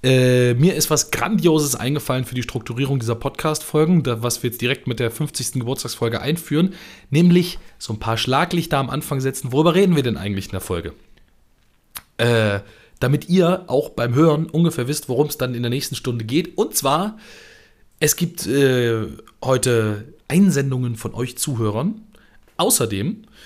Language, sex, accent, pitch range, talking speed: German, male, German, 115-150 Hz, 160 wpm